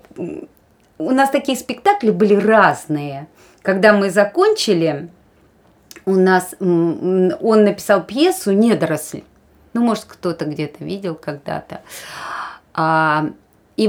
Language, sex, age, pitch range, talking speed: Russian, female, 30-49, 165-220 Hz, 95 wpm